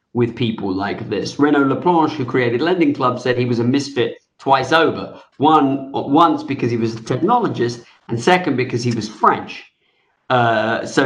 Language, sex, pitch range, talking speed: English, male, 125-160 Hz, 175 wpm